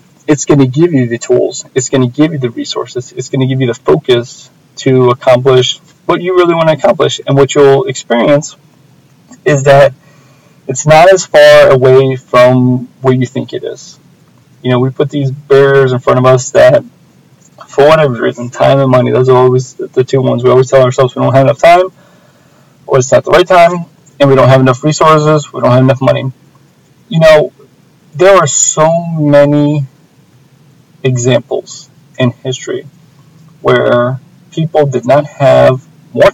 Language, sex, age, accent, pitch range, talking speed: English, male, 20-39, American, 130-155 Hz, 180 wpm